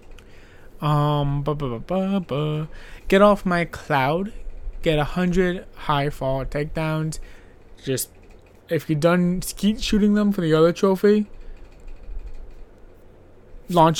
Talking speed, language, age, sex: 120 wpm, English, 20-39, male